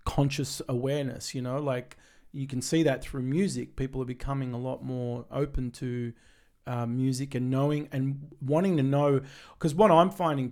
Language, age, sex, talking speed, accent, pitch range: English, 30-49, male, 175 wpm, Australian, 130-155 Hz